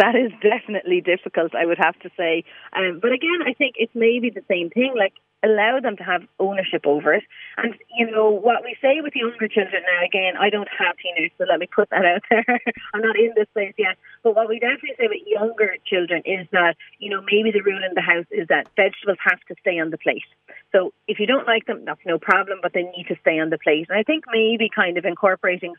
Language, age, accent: English, 30-49, Irish